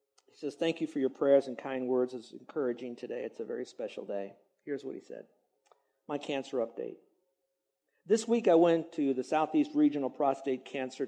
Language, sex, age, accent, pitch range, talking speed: English, male, 50-69, American, 125-165 Hz, 190 wpm